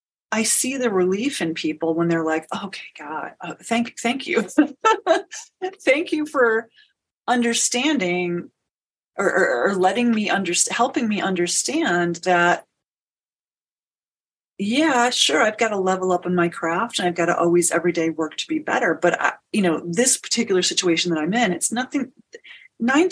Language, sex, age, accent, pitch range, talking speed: English, female, 30-49, American, 175-270 Hz, 160 wpm